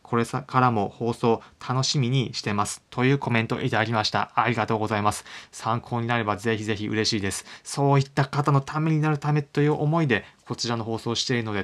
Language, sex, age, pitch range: Japanese, male, 20-39, 105-140 Hz